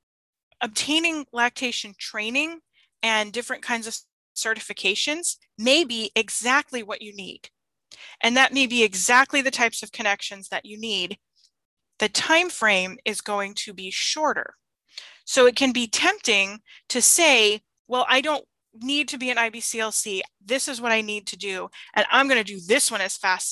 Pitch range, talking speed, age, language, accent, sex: 215-275 Hz, 165 wpm, 20-39, English, American, female